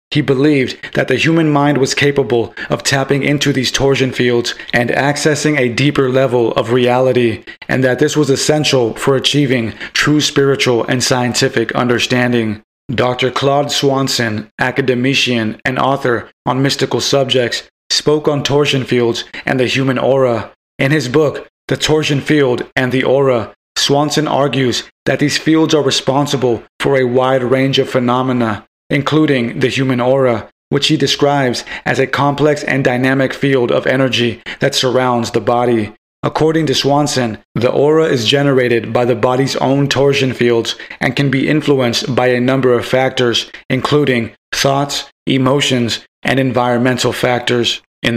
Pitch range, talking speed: 125-140 Hz, 150 wpm